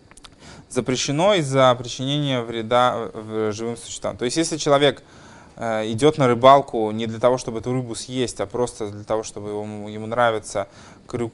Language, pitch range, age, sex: Russian, 110-135 Hz, 20-39, male